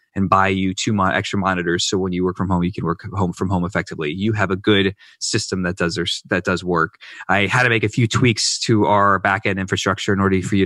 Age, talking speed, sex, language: 20-39, 255 wpm, male, English